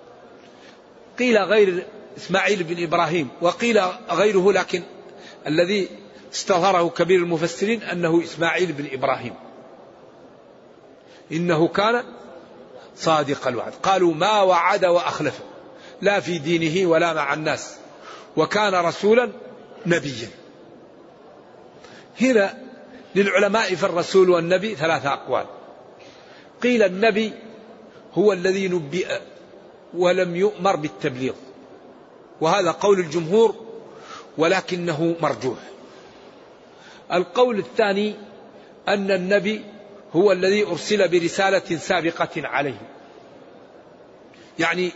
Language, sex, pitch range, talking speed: Arabic, male, 170-205 Hz, 85 wpm